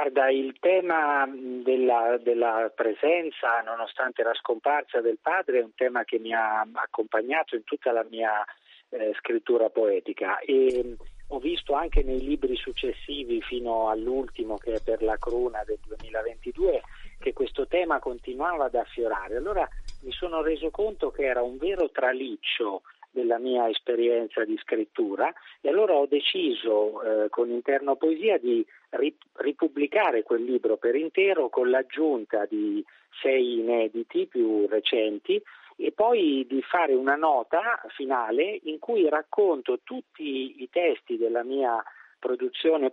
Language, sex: Italian, male